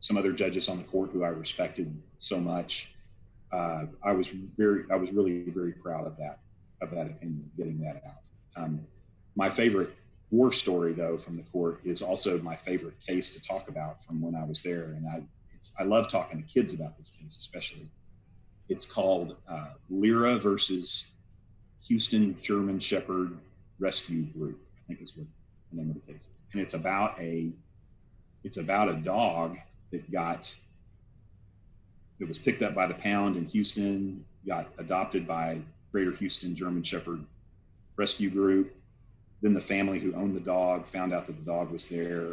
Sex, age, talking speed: male, 40-59, 175 wpm